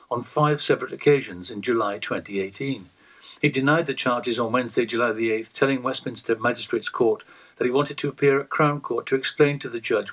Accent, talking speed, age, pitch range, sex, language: British, 190 wpm, 50-69, 120-160 Hz, male, English